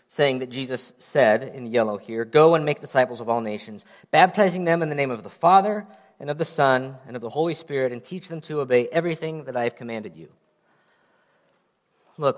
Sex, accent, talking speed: male, American, 210 wpm